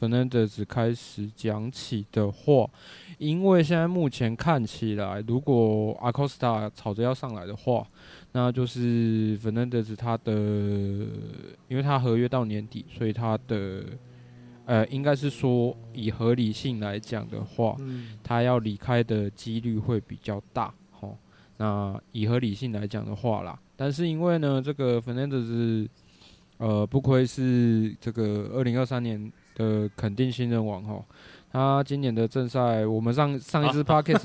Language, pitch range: Chinese, 110-125 Hz